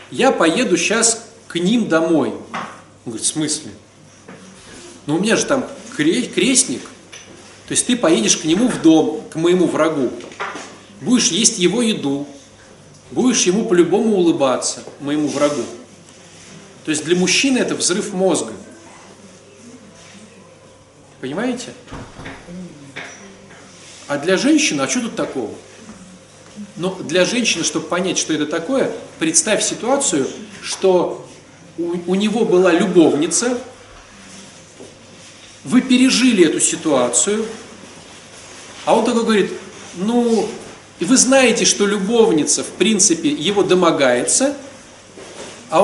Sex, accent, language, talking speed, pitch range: male, native, Russian, 115 wpm, 175-250 Hz